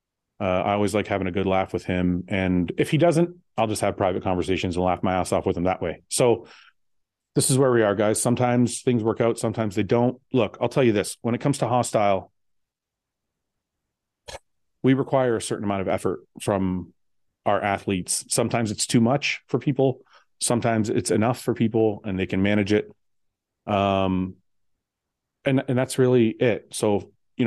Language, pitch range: English, 95-120 Hz